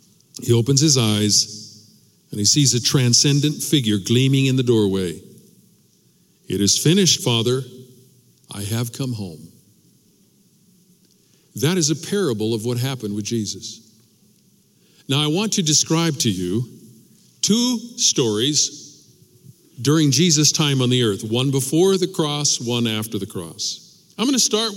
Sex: male